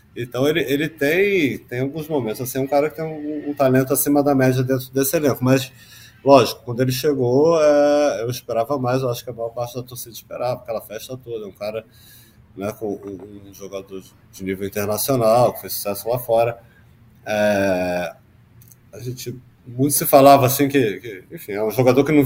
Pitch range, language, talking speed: 105-135 Hz, Portuguese, 185 wpm